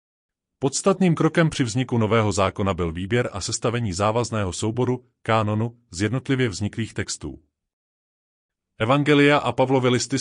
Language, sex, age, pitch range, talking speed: Czech, male, 30-49, 100-130 Hz, 120 wpm